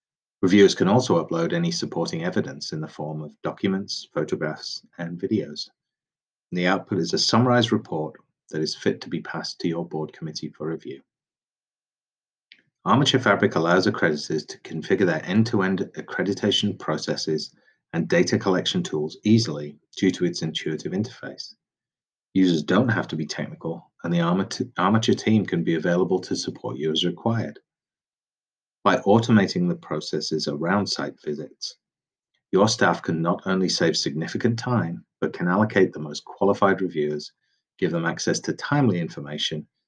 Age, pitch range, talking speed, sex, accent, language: 30-49, 80-110 Hz, 150 wpm, male, British, English